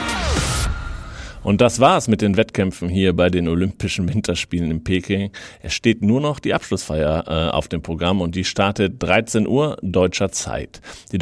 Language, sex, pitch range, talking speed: German, male, 85-105 Hz, 170 wpm